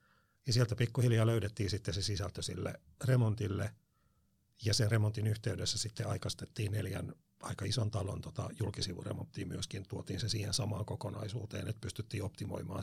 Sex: male